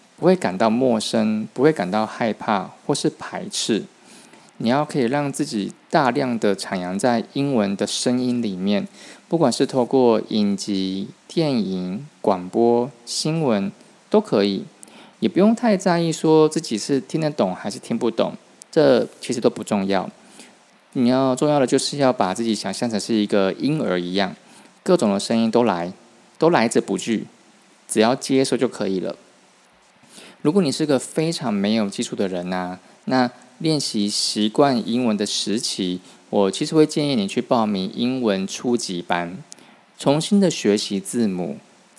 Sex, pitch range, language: male, 100-150 Hz, Chinese